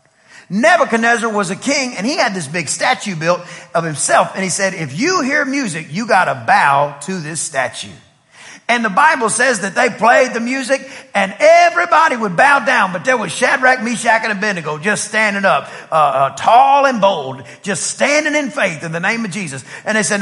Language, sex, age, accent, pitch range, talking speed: English, male, 40-59, American, 185-260 Hz, 200 wpm